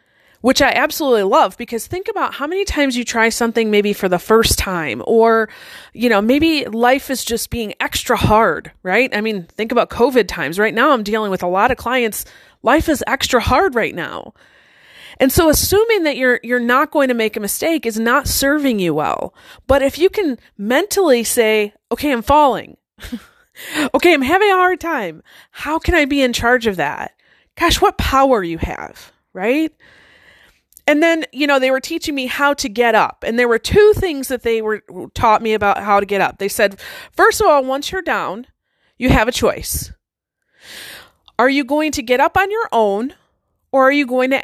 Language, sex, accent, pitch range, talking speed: English, female, American, 225-300 Hz, 200 wpm